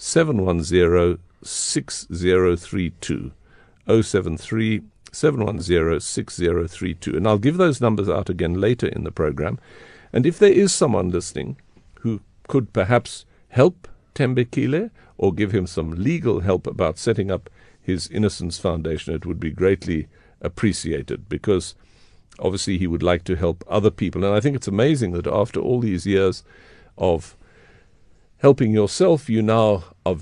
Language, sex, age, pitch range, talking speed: English, male, 50-69, 85-115 Hz, 130 wpm